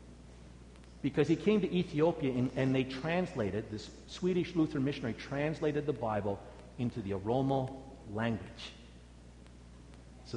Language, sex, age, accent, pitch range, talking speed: English, male, 50-69, American, 120-190 Hz, 120 wpm